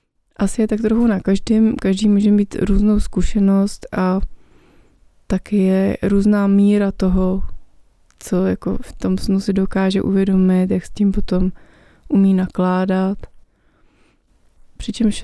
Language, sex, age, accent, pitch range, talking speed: Czech, female, 20-39, native, 190-205 Hz, 125 wpm